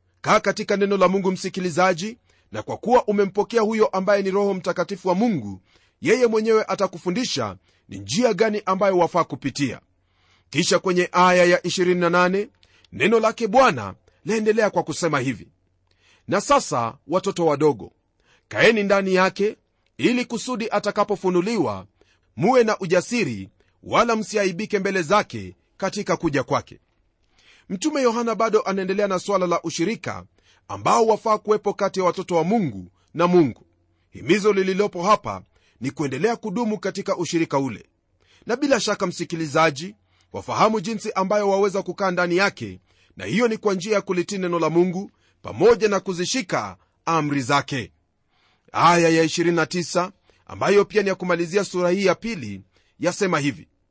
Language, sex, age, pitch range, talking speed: Swahili, male, 40-59, 130-205 Hz, 140 wpm